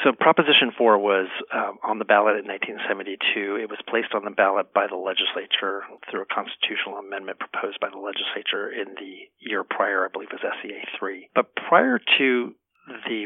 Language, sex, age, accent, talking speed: English, male, 40-59, American, 185 wpm